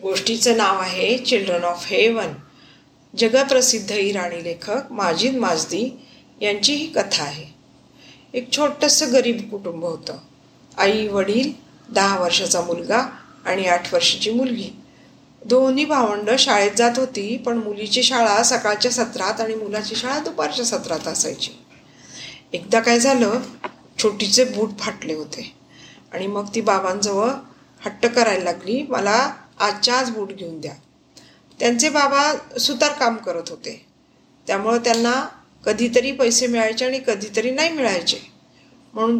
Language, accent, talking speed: Marathi, native, 125 wpm